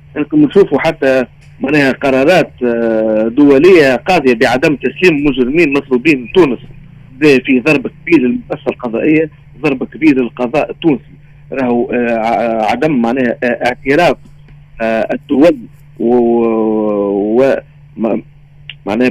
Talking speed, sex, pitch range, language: 90 wpm, male, 125-150 Hz, Arabic